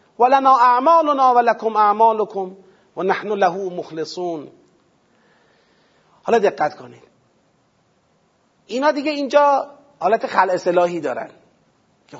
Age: 40-59